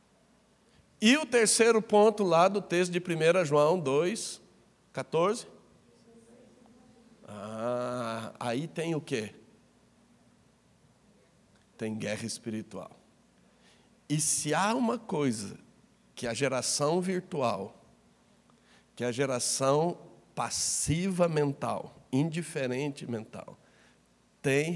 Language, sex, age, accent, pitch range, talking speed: Portuguese, male, 60-79, Brazilian, 140-200 Hz, 90 wpm